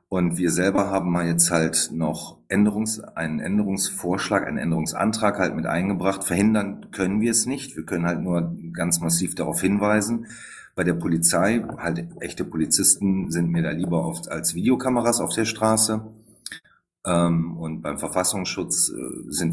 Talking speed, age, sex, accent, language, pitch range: 150 wpm, 40-59, male, German, German, 80-100 Hz